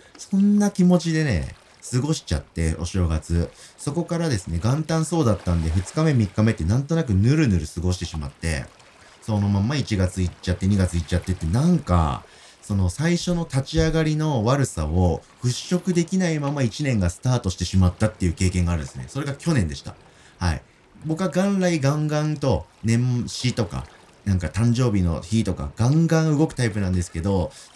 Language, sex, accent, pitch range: Japanese, male, native, 90-140 Hz